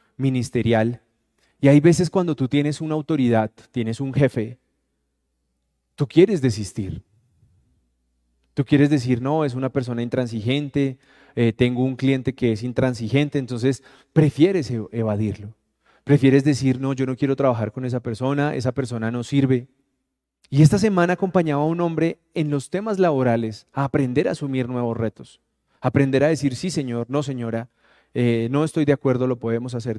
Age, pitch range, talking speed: 20-39, 115-145 Hz, 160 wpm